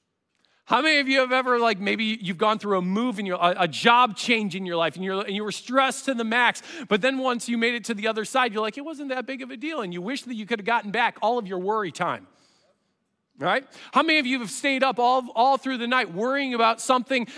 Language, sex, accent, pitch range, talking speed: English, male, American, 220-275 Hz, 270 wpm